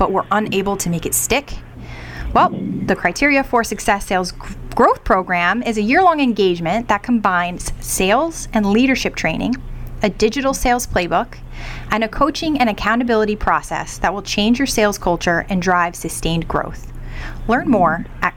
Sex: female